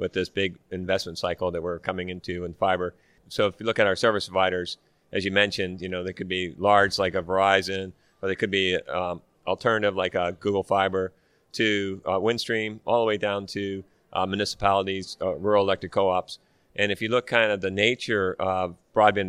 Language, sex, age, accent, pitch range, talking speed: English, male, 40-59, American, 90-100 Hz, 205 wpm